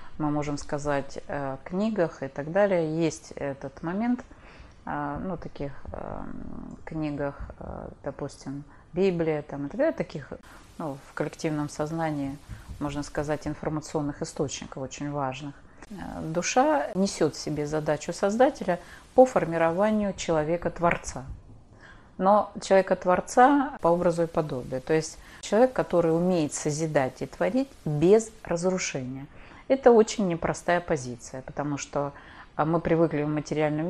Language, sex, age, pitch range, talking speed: Russian, female, 30-49, 145-200 Hz, 115 wpm